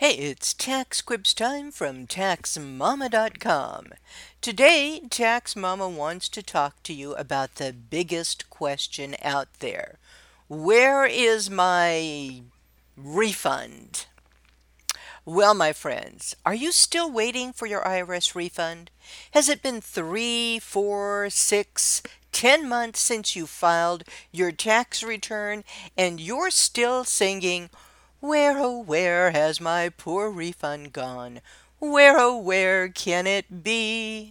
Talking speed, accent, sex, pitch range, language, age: 120 wpm, American, female, 165-235 Hz, English, 50-69